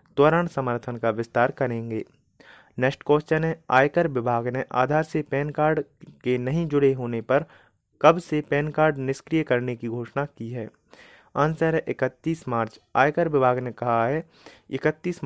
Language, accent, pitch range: Hindi, native, 120-150 Hz